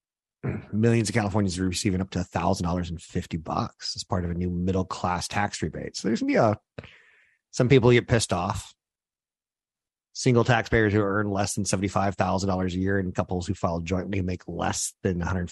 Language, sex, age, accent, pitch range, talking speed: English, male, 30-49, American, 90-110 Hz, 210 wpm